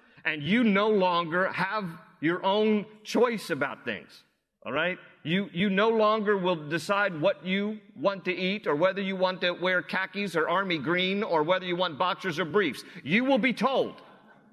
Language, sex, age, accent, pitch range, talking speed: English, male, 50-69, American, 180-225 Hz, 180 wpm